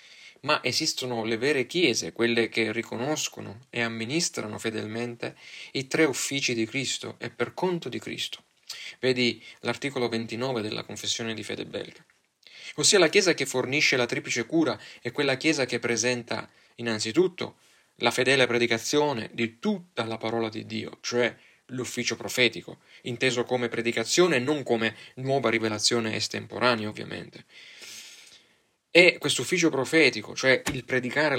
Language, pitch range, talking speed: Italian, 115-140 Hz, 140 wpm